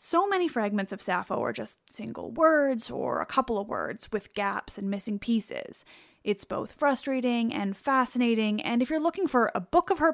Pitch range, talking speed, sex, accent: 210-280 Hz, 195 wpm, female, American